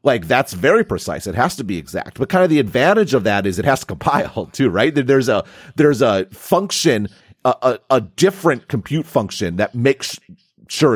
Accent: American